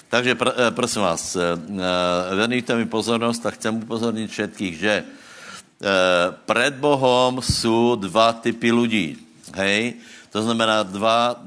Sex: male